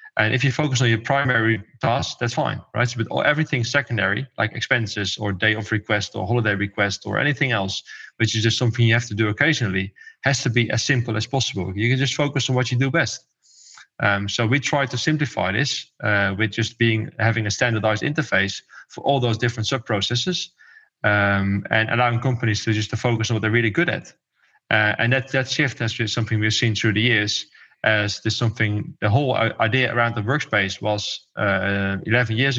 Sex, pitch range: male, 105-125 Hz